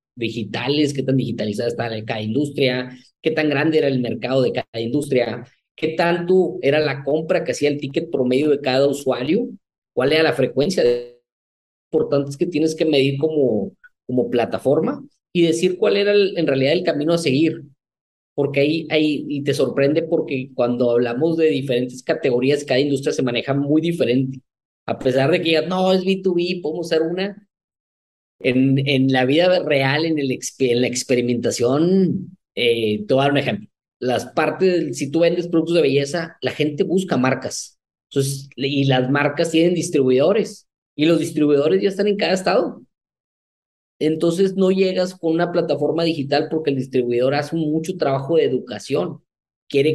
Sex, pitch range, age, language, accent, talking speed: male, 130-165 Hz, 20-39, Spanish, Mexican, 170 wpm